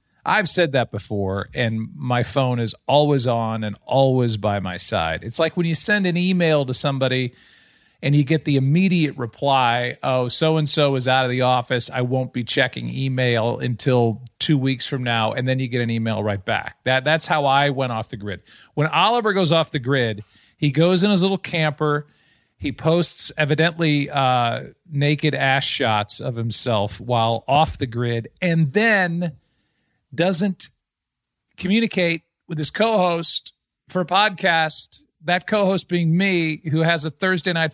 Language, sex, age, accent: English, male, 40-59, American